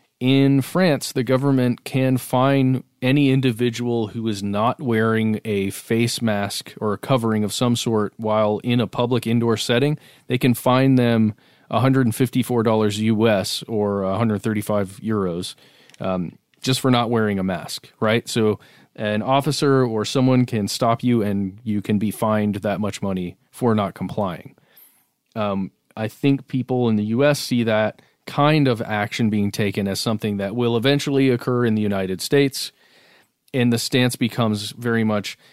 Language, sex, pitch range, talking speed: English, male, 105-130 Hz, 155 wpm